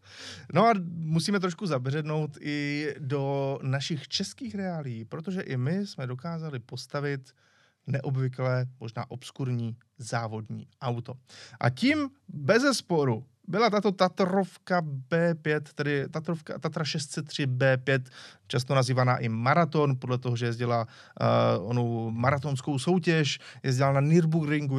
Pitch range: 130-165 Hz